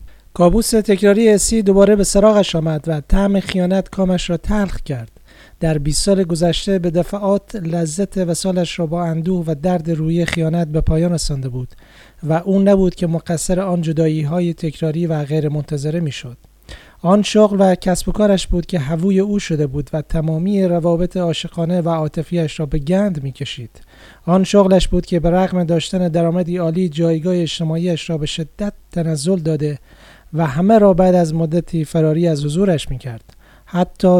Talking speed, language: 165 wpm, Persian